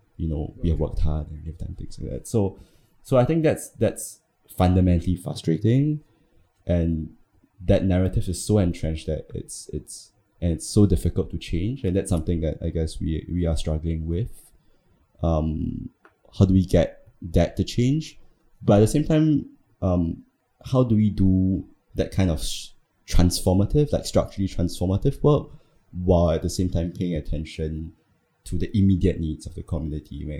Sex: male